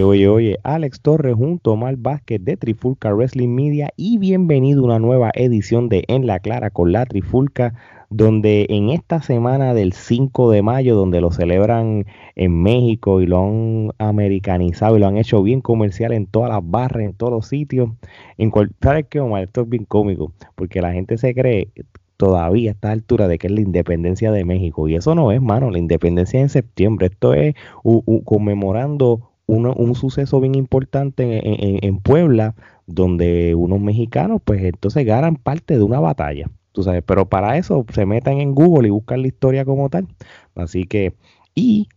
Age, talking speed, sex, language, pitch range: 30-49, 185 wpm, male, Spanish, 95-125 Hz